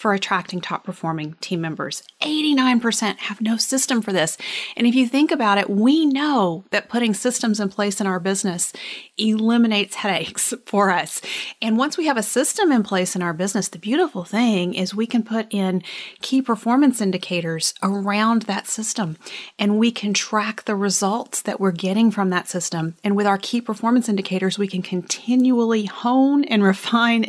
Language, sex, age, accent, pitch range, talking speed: English, female, 30-49, American, 185-225 Hz, 180 wpm